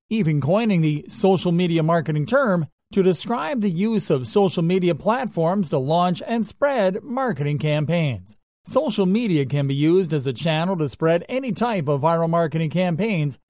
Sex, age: male, 40-59